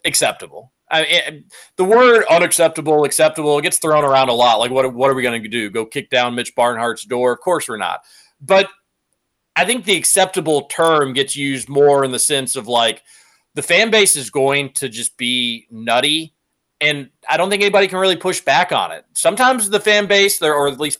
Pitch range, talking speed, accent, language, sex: 135-185 Hz, 210 wpm, American, English, male